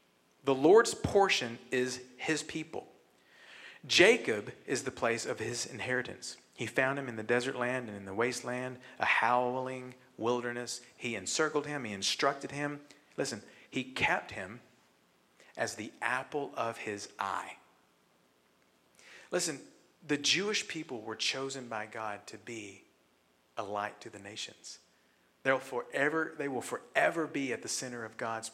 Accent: American